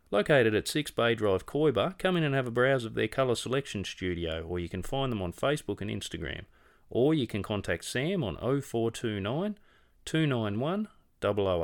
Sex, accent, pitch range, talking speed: male, Australian, 95-120 Hz, 175 wpm